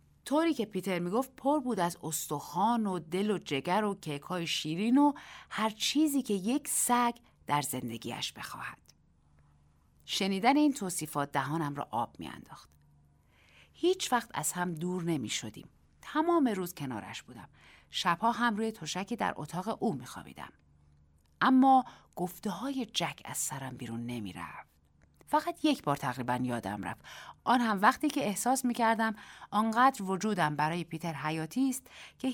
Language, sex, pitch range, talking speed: Persian, female, 140-235 Hz, 150 wpm